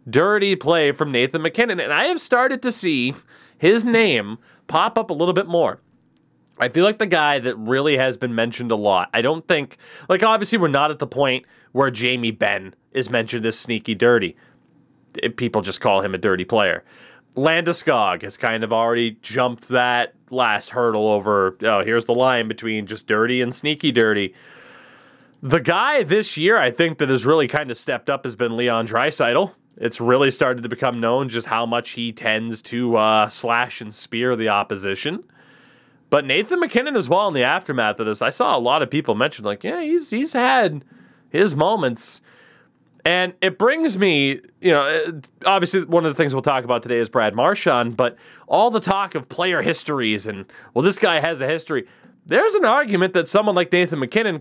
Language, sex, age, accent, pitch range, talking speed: English, male, 30-49, American, 115-170 Hz, 195 wpm